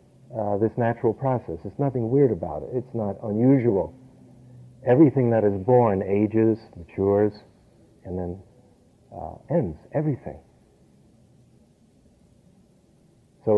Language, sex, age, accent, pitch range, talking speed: English, male, 50-69, American, 100-125 Hz, 105 wpm